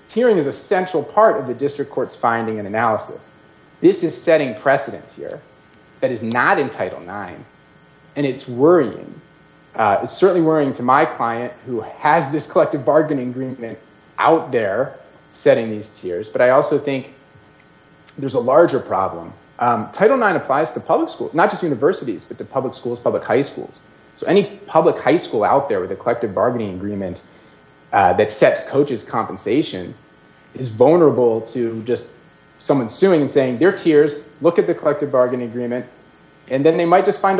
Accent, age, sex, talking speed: American, 40-59, male, 175 wpm